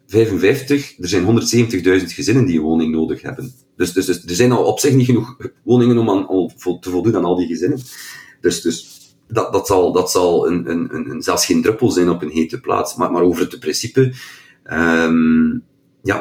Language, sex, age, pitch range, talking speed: Dutch, male, 40-59, 85-120 Hz, 200 wpm